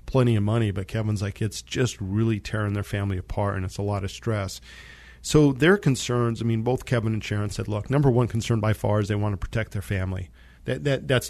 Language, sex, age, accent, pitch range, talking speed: English, male, 40-59, American, 100-115 Hz, 240 wpm